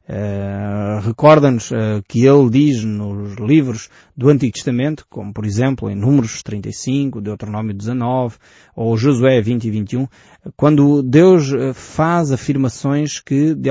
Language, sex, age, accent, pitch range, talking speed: Portuguese, male, 20-39, Portuguese, 115-160 Hz, 135 wpm